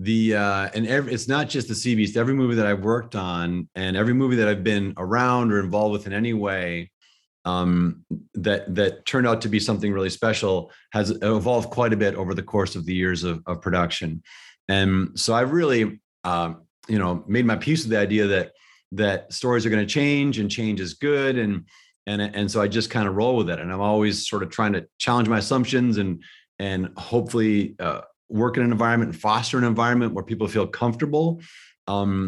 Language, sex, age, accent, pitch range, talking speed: English, male, 30-49, American, 100-115 Hz, 215 wpm